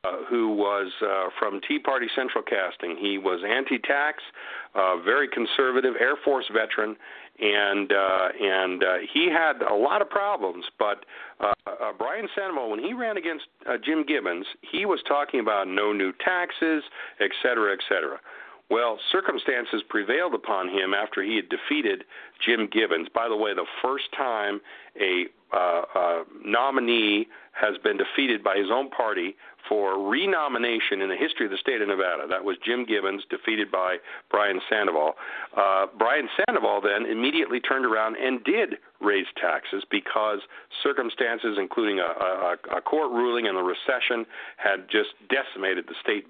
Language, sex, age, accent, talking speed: English, male, 50-69, American, 160 wpm